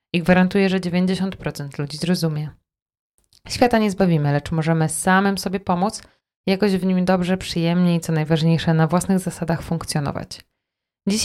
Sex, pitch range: female, 160-195 Hz